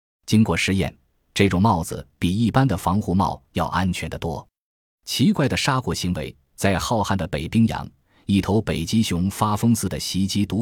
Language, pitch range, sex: Chinese, 85-115 Hz, male